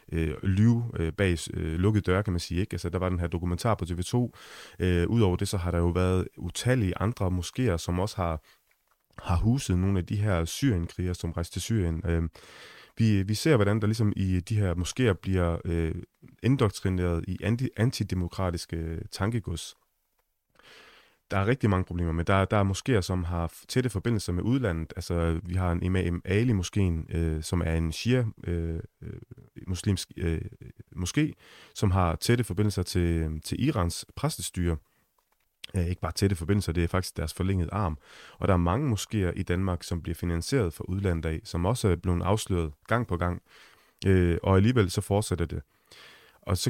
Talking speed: 180 wpm